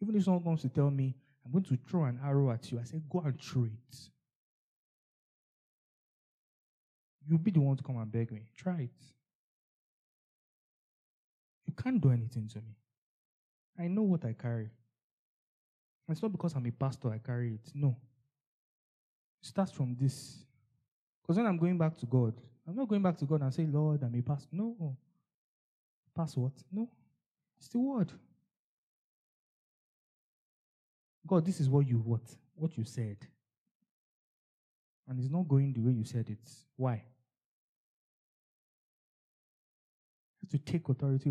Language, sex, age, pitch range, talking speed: English, male, 20-39, 125-165 Hz, 155 wpm